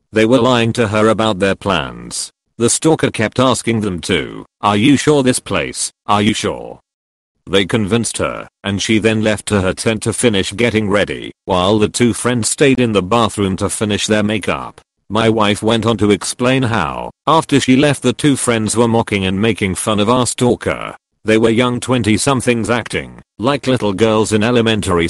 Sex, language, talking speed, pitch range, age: male, English, 190 wpm, 100-120 Hz, 40-59